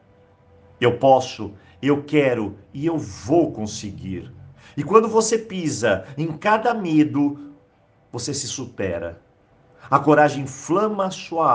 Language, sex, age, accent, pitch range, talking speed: Portuguese, male, 50-69, Brazilian, 115-160 Hz, 115 wpm